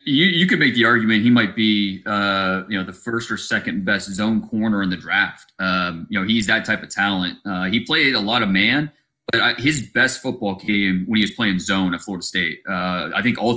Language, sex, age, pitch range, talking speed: English, male, 30-49, 100-120 Hz, 245 wpm